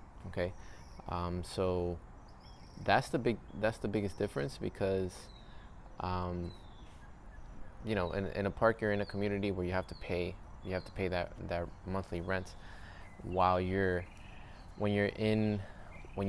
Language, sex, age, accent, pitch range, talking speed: English, male, 20-39, American, 90-100 Hz, 150 wpm